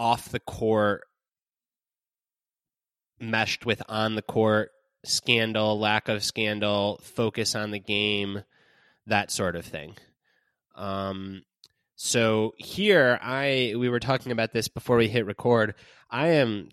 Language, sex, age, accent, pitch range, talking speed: English, male, 20-39, American, 100-115 Hz, 110 wpm